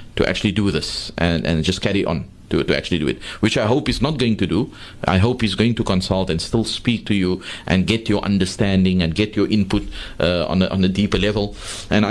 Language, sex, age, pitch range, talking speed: English, male, 30-49, 95-120 Hz, 245 wpm